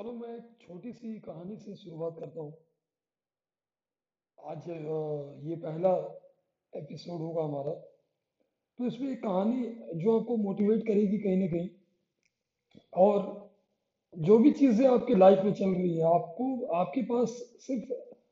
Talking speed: 135 wpm